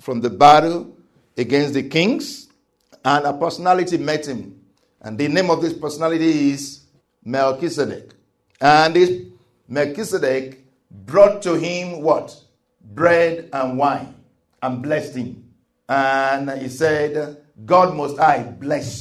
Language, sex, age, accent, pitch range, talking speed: English, male, 50-69, Nigerian, 130-180 Hz, 120 wpm